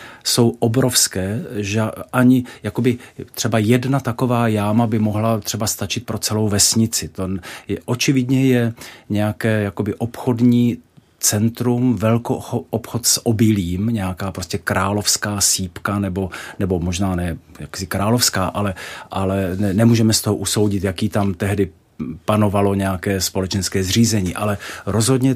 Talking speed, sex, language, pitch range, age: 130 wpm, male, Czech, 100-120 Hz, 40-59